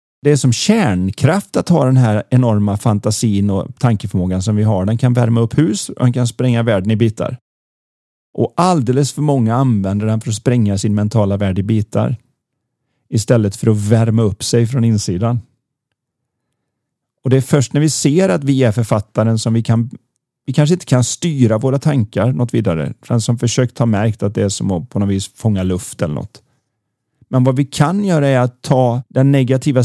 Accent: native